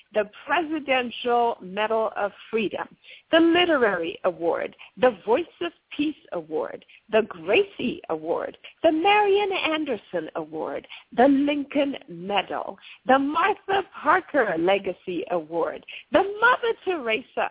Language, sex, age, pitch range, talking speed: English, female, 50-69, 205-320 Hz, 105 wpm